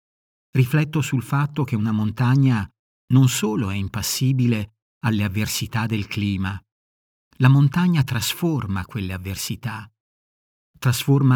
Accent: native